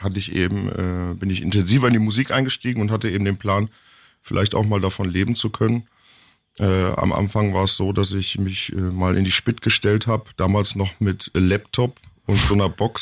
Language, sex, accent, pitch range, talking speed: German, male, German, 95-110 Hz, 205 wpm